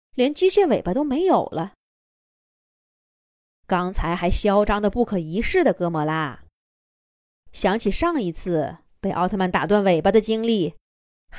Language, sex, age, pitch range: Chinese, female, 20-39, 185-280 Hz